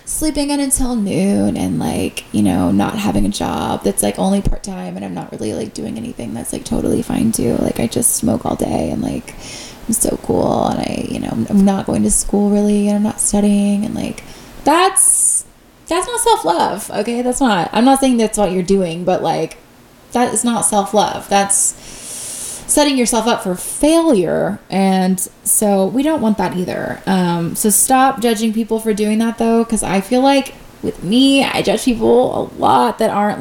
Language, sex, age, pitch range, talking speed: English, female, 20-39, 190-250 Hz, 200 wpm